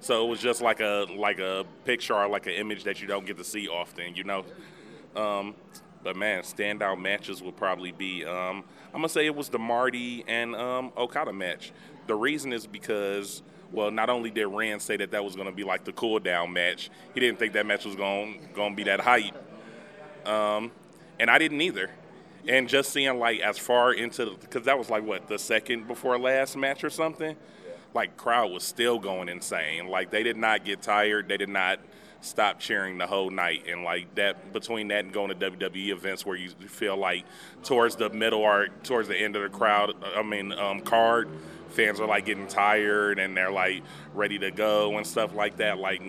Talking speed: 210 wpm